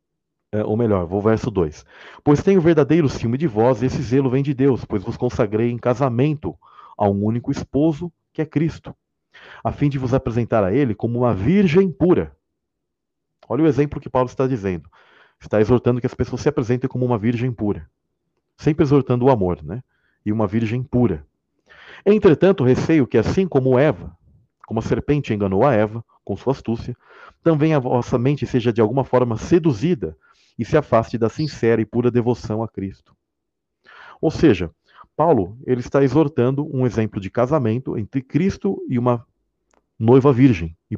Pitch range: 110-145 Hz